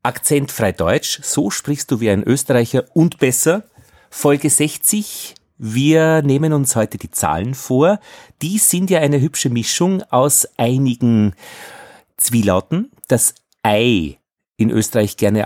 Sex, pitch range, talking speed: male, 105-155 Hz, 130 wpm